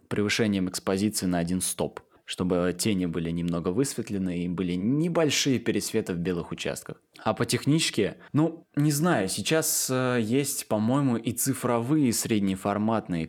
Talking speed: 130 wpm